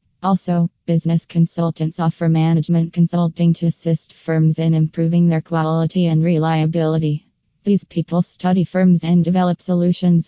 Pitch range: 165-180 Hz